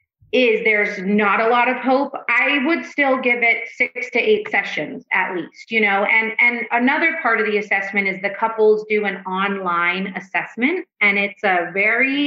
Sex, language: female, English